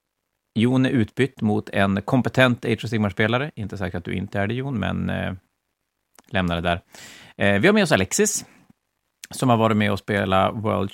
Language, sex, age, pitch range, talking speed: Swedish, male, 30-49, 95-120 Hz, 180 wpm